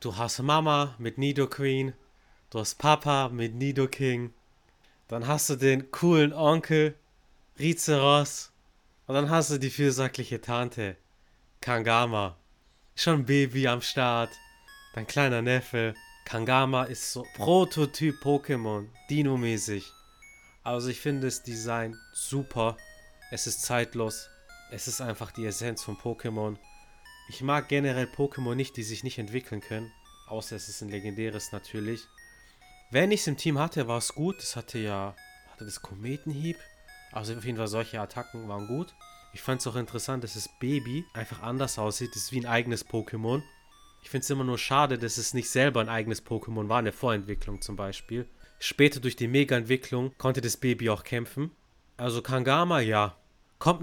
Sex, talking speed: male, 160 wpm